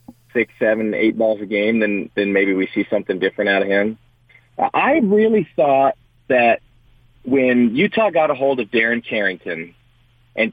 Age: 40-59